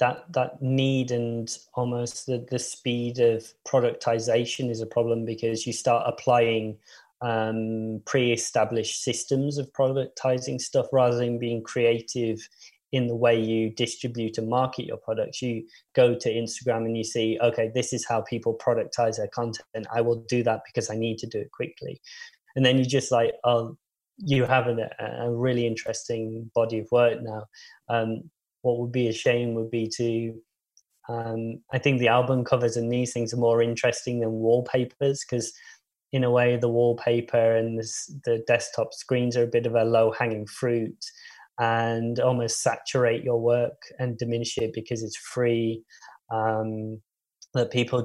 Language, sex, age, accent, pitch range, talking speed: English, male, 20-39, British, 115-125 Hz, 165 wpm